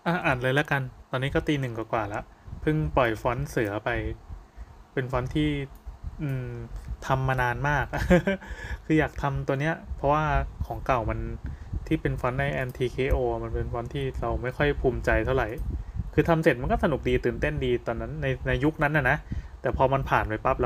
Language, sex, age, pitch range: Thai, male, 20-39, 115-145 Hz